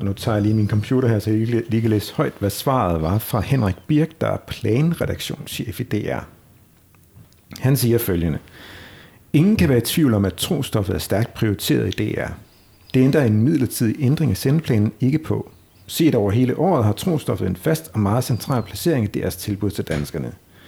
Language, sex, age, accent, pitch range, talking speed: Danish, male, 60-79, native, 100-135 Hz, 195 wpm